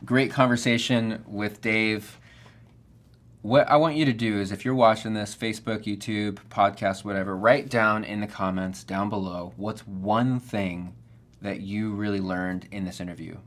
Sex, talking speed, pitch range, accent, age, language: male, 160 wpm, 95-120 Hz, American, 20-39, English